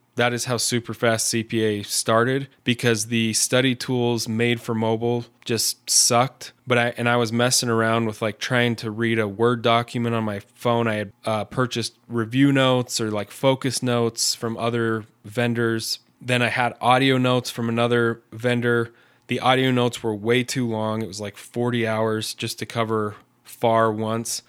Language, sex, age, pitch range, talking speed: English, male, 10-29, 110-125 Hz, 175 wpm